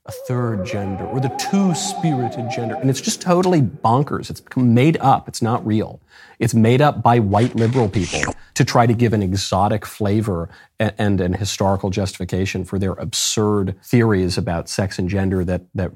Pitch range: 95-125 Hz